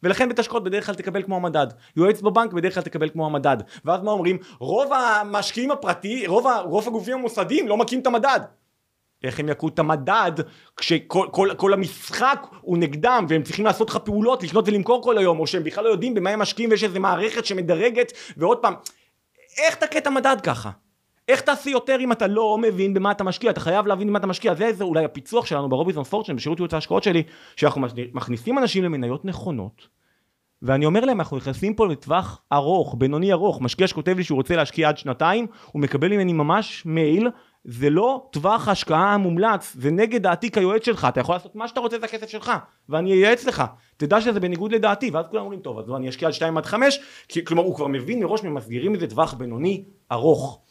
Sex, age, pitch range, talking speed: male, 30-49, 155-225 Hz, 180 wpm